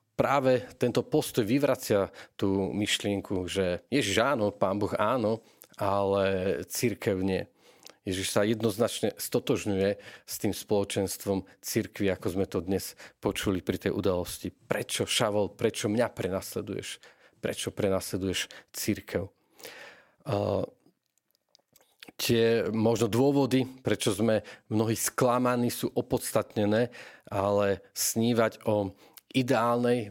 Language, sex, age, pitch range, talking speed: Slovak, male, 40-59, 100-115 Hz, 105 wpm